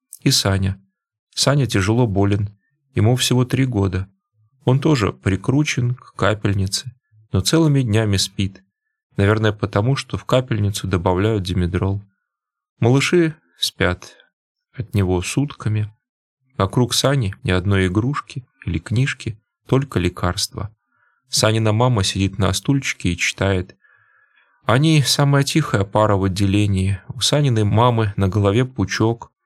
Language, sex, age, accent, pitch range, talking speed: Russian, male, 20-39, native, 100-125 Hz, 120 wpm